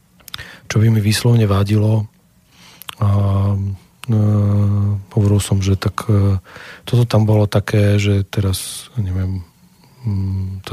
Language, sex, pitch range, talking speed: Slovak, male, 95-110 Hz, 110 wpm